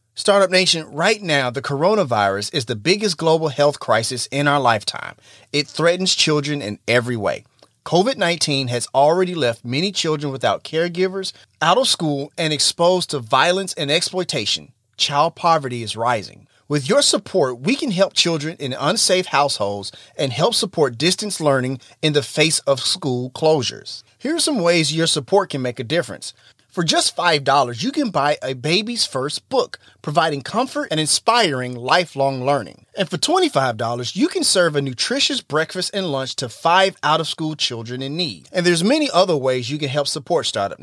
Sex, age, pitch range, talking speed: male, 30-49, 135-185 Hz, 170 wpm